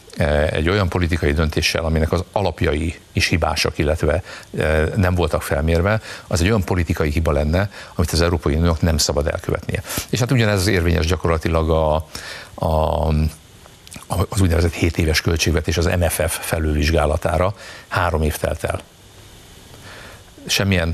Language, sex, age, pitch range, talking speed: Hungarian, male, 60-79, 80-95 Hz, 135 wpm